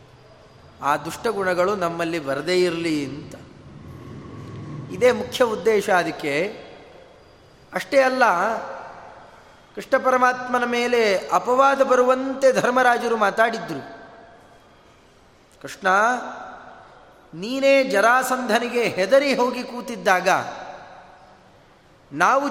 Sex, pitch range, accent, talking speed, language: male, 200-255 Hz, native, 70 wpm, Kannada